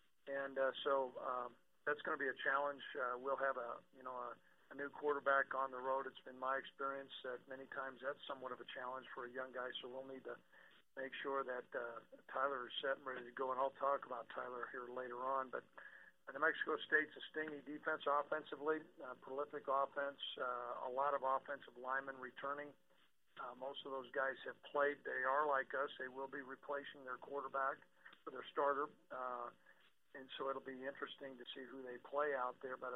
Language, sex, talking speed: English, male, 205 wpm